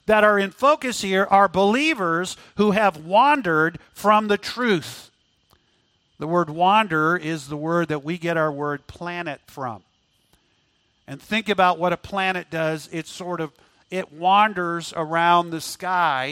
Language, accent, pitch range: English, American, 170-215 Hz